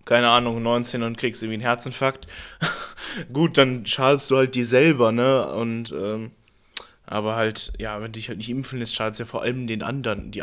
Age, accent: 20-39, German